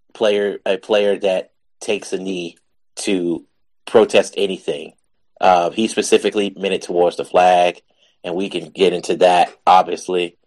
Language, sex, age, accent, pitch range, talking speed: English, male, 30-49, American, 90-105 Hz, 145 wpm